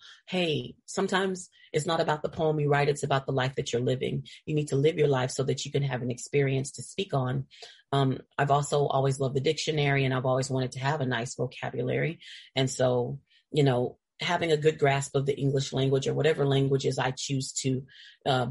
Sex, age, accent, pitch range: female, 30-49, American, 135-155 Hz